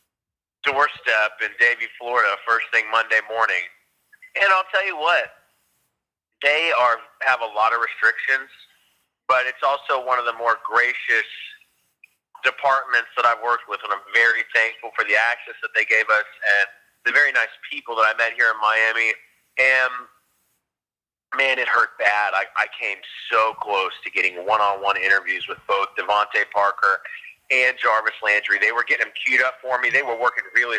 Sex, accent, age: male, American, 30-49